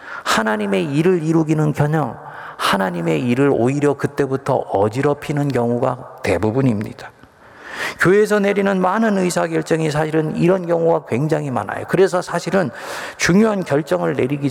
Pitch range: 125-170 Hz